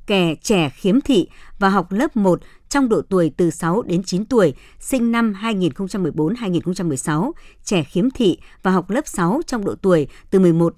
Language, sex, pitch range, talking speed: Vietnamese, male, 170-215 Hz, 180 wpm